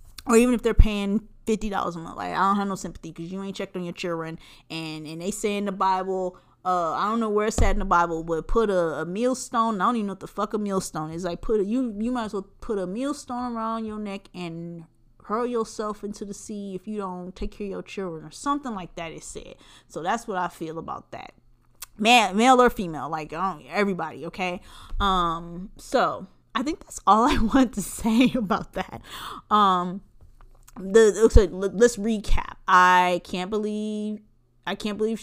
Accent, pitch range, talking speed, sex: American, 170-220 Hz, 220 wpm, female